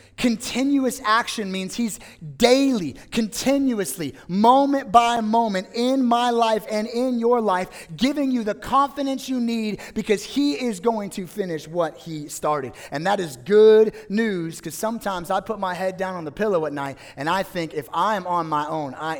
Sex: male